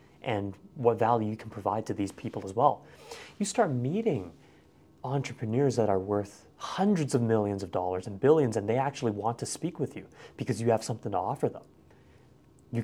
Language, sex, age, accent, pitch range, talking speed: English, male, 30-49, American, 110-150 Hz, 190 wpm